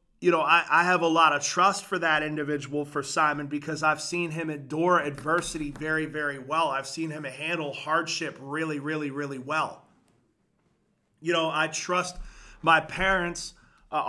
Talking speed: 165 wpm